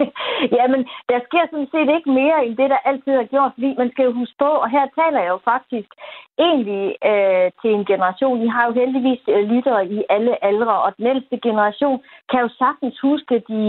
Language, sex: Danish, female